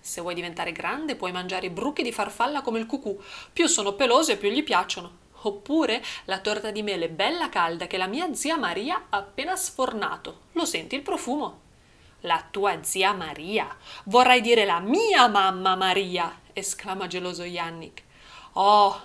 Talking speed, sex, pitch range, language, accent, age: 165 wpm, female, 185-290 Hz, Italian, native, 30-49